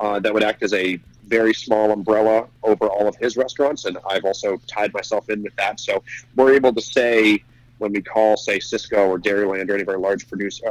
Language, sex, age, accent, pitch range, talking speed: English, male, 30-49, American, 100-120 Hz, 225 wpm